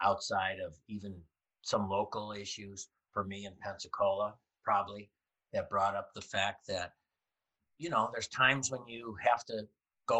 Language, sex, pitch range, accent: English, male, 100-115 Hz, American